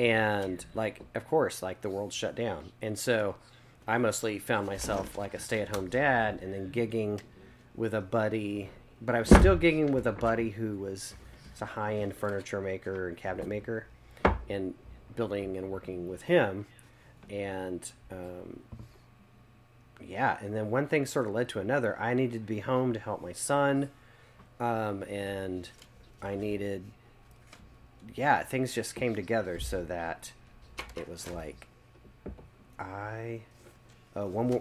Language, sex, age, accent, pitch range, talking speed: English, male, 30-49, American, 95-120 Hz, 150 wpm